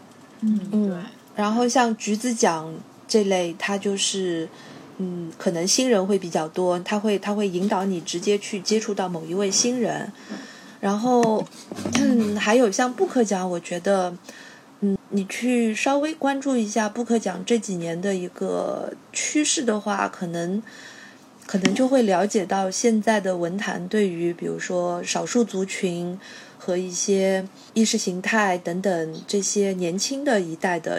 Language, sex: Chinese, female